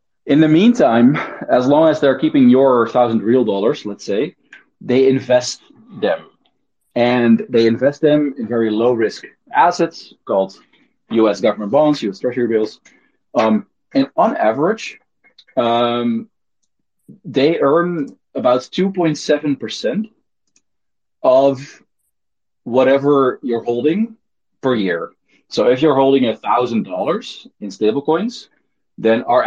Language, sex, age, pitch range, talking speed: English, male, 30-49, 105-140 Hz, 120 wpm